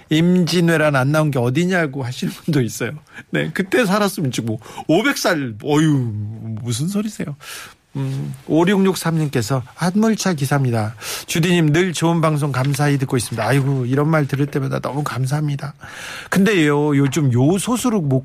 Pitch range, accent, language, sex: 135-180 Hz, native, Korean, male